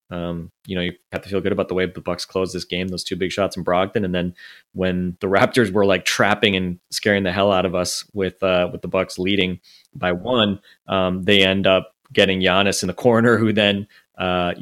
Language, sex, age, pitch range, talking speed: English, male, 20-39, 85-95 Hz, 235 wpm